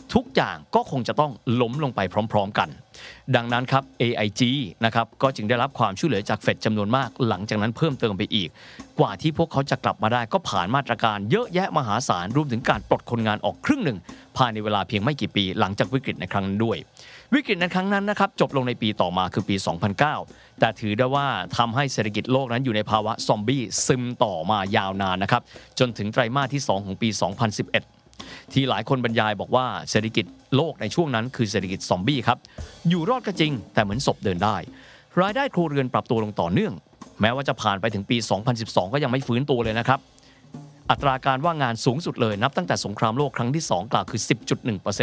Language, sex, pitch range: Thai, male, 105-135 Hz